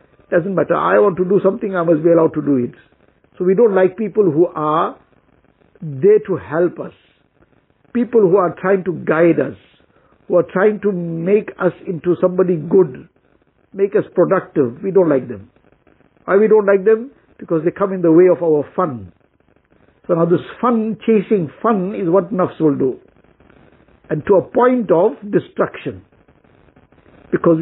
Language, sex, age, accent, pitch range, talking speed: English, male, 60-79, Indian, 170-215 Hz, 175 wpm